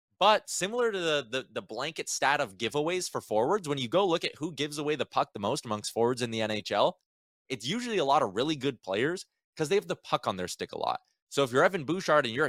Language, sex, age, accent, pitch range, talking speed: English, male, 20-39, American, 120-180 Hz, 260 wpm